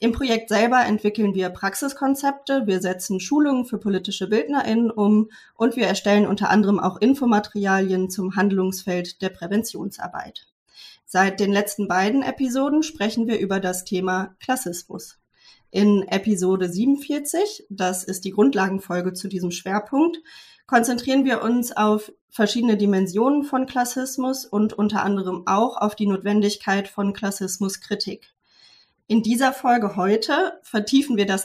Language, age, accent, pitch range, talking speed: German, 30-49, German, 195-240 Hz, 130 wpm